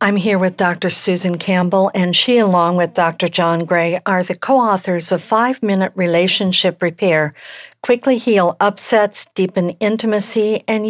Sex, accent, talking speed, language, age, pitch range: female, American, 145 wpm, English, 60-79, 160-200 Hz